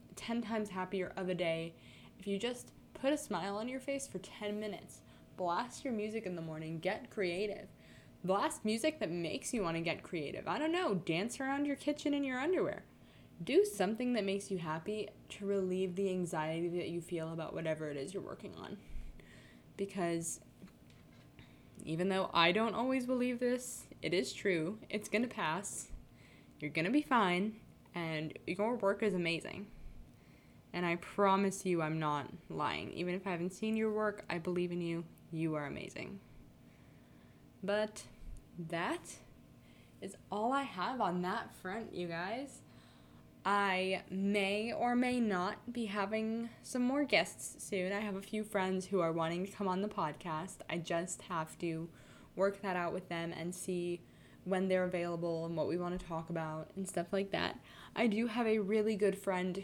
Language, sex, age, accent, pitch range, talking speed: English, female, 10-29, American, 175-215 Hz, 180 wpm